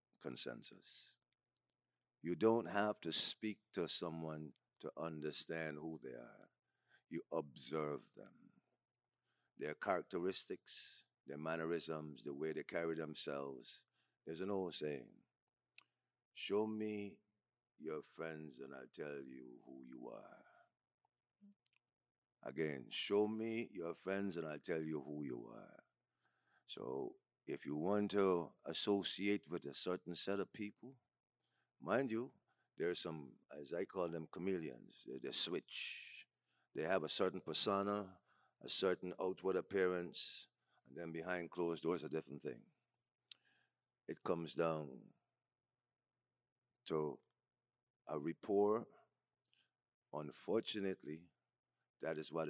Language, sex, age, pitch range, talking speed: English, male, 50-69, 75-100 Hz, 120 wpm